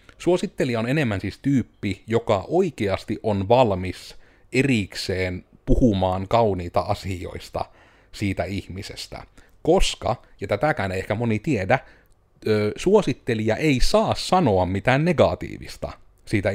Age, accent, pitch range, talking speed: 30-49, native, 95-130 Hz, 105 wpm